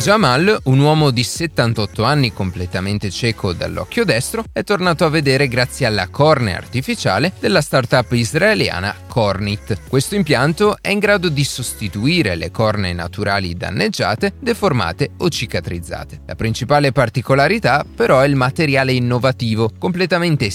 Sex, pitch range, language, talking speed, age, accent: male, 105-150 Hz, Italian, 130 wpm, 30-49, native